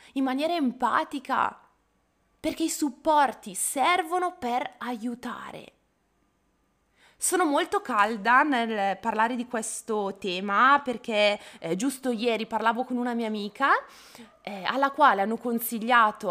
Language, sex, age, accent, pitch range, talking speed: Italian, female, 20-39, native, 230-335 Hz, 115 wpm